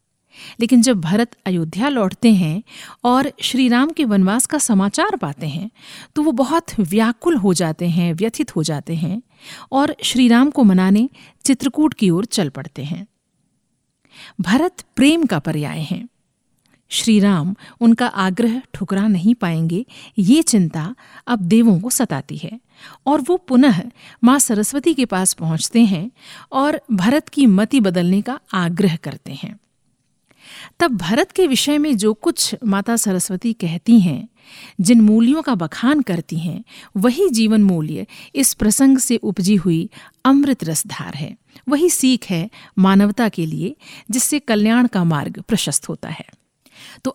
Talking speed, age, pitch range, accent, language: 150 wpm, 50-69, 185-255 Hz, native, Hindi